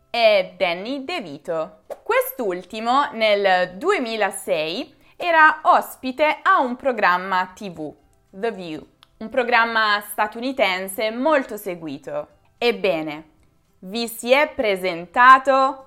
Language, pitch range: Italian, 185-275 Hz